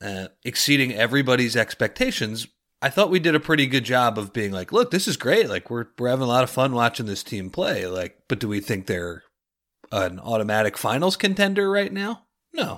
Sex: male